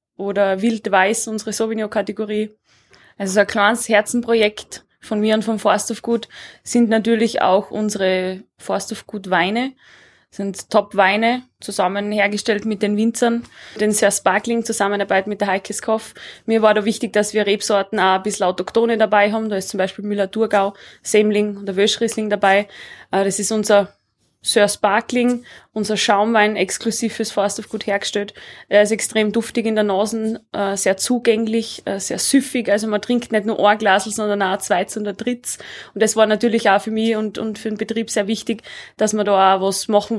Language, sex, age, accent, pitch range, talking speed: German, female, 20-39, Austrian, 200-225 Hz, 175 wpm